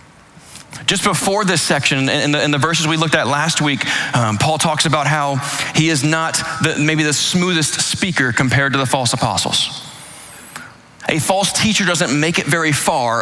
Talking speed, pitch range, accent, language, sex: 180 wpm, 135-160 Hz, American, English, male